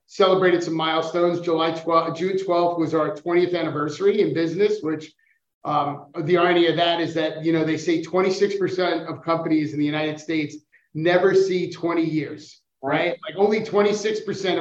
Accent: American